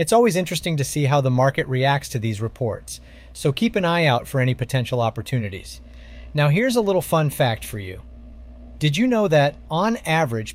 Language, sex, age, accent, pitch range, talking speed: English, male, 30-49, American, 110-150 Hz, 200 wpm